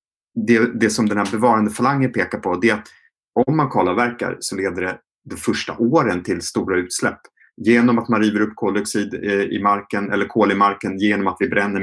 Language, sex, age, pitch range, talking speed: Swedish, male, 30-49, 95-115 Hz, 210 wpm